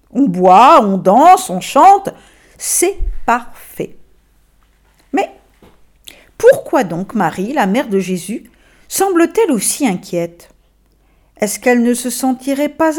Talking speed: 115 wpm